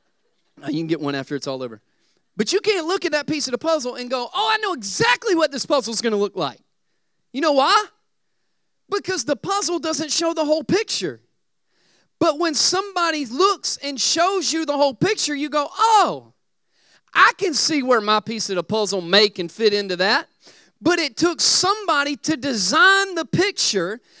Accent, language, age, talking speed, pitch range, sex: American, English, 30-49, 190 wpm, 245-370 Hz, male